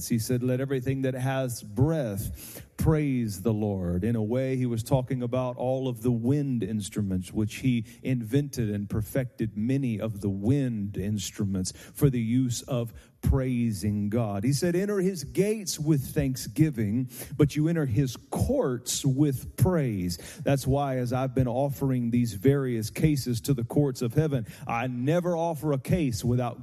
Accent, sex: American, male